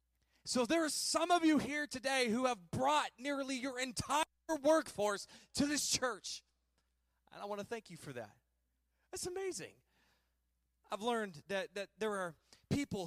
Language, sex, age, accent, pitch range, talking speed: English, male, 20-39, American, 170-265 Hz, 160 wpm